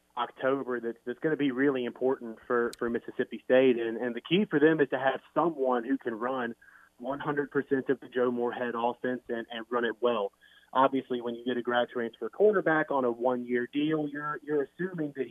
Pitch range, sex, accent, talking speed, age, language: 120-140 Hz, male, American, 200 wpm, 30-49, English